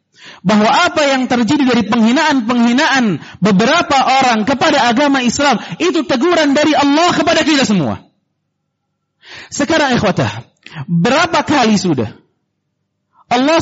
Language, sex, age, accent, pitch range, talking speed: Indonesian, male, 40-59, native, 235-315 Hz, 105 wpm